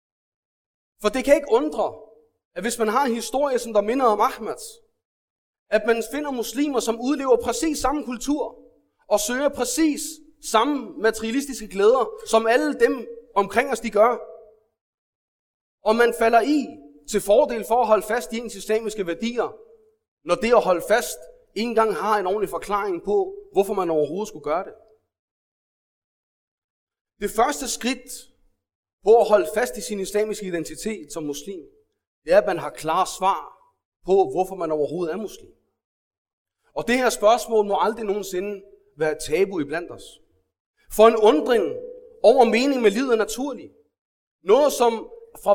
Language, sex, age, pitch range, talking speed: Danish, male, 30-49, 210-285 Hz, 160 wpm